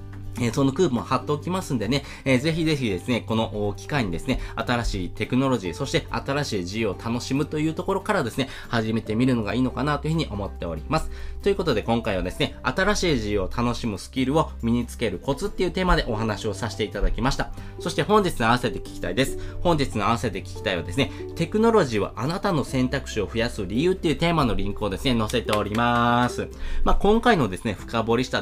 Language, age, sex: Japanese, 20-39, male